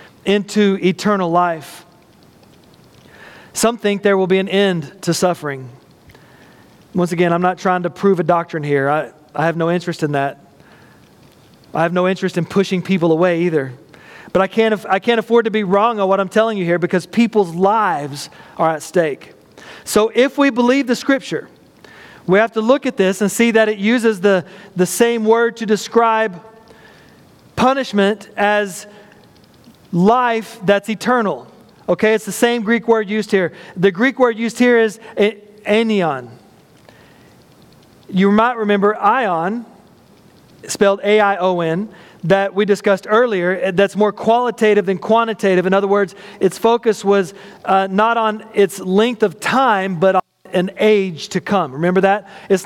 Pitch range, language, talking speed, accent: 180-220 Hz, English, 160 wpm, American